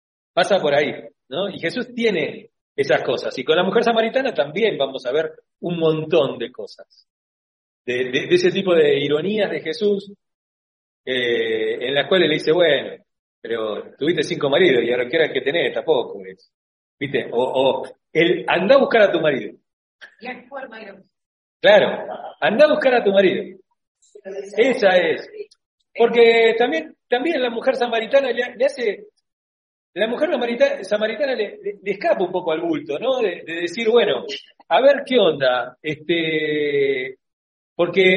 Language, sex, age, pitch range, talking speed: Spanish, male, 40-59, 165-275 Hz, 160 wpm